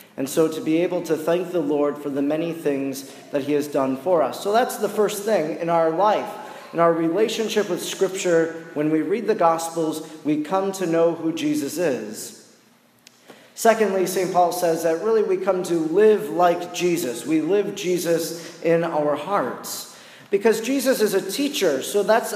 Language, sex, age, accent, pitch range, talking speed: English, male, 40-59, American, 170-210 Hz, 185 wpm